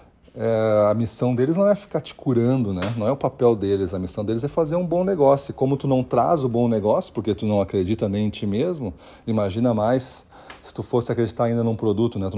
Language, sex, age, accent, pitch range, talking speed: Portuguese, male, 40-59, Brazilian, 105-130 Hz, 240 wpm